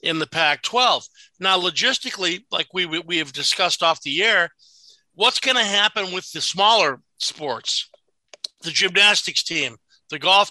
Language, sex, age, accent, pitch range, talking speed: English, male, 50-69, American, 170-210 Hz, 160 wpm